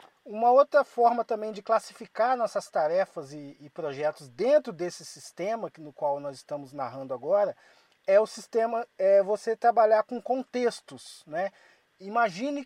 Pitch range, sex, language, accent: 200-270 Hz, male, Portuguese, Brazilian